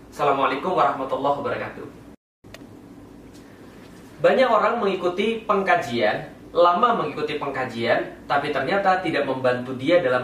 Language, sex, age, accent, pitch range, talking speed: Indonesian, male, 30-49, native, 135-180 Hz, 95 wpm